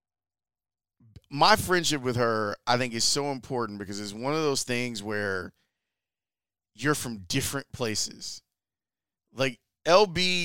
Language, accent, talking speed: English, American, 125 wpm